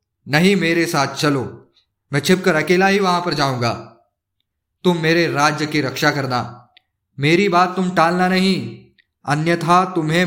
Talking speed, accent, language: 140 wpm, native, Hindi